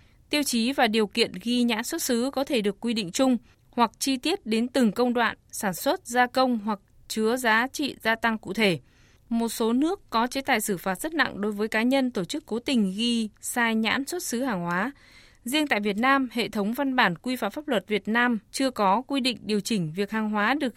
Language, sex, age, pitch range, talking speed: Vietnamese, female, 20-39, 210-260 Hz, 240 wpm